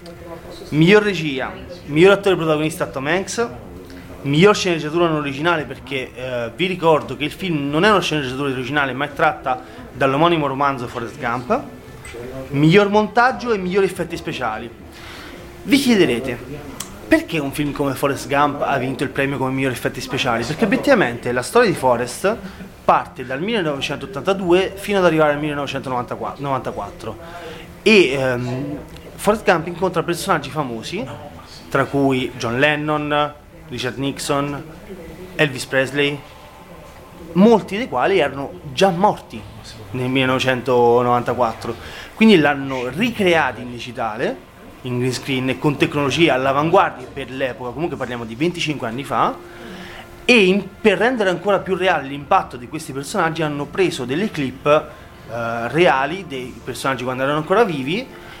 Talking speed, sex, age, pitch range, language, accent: 135 wpm, male, 30-49, 130-175 Hz, Italian, native